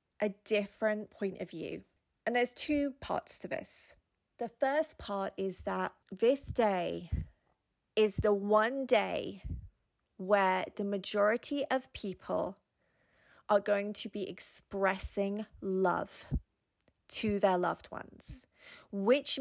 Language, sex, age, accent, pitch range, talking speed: English, female, 30-49, British, 190-225 Hz, 120 wpm